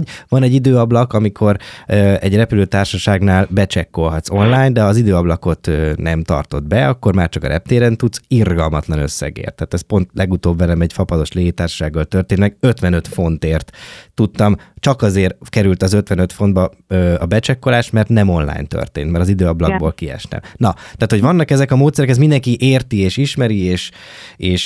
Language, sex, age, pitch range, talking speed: Hungarian, male, 20-39, 90-125 Hz, 165 wpm